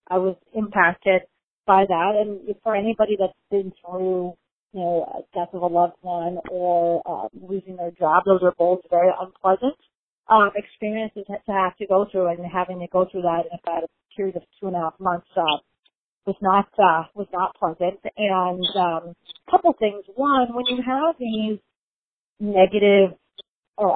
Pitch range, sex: 180-220 Hz, female